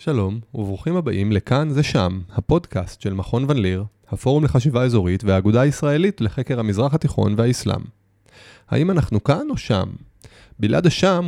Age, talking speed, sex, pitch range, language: 30-49, 140 wpm, male, 105-145 Hz, Hebrew